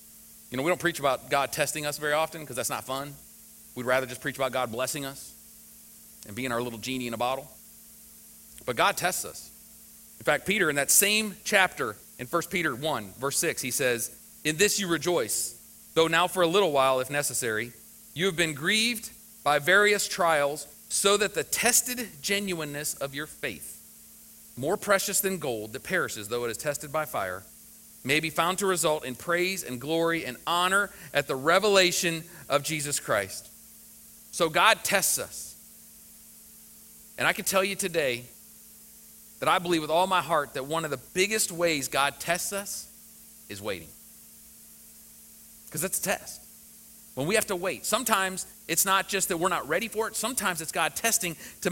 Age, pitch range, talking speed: 40-59, 125-190 Hz, 185 wpm